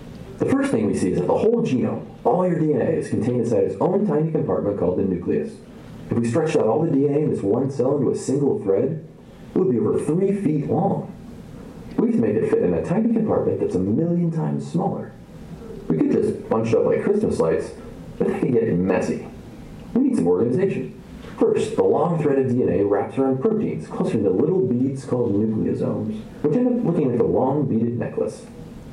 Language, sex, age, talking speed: English, male, 40-59, 205 wpm